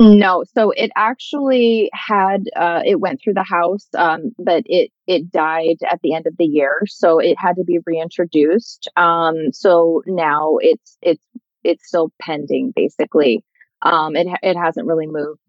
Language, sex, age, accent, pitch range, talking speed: English, female, 20-39, American, 165-205 Hz, 165 wpm